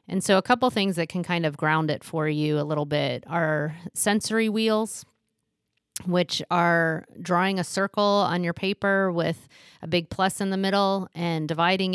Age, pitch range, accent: 30-49, 165-195 Hz, American